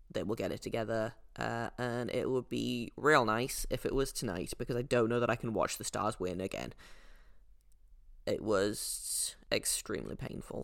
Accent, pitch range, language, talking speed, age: British, 95-125 Hz, English, 180 wpm, 20-39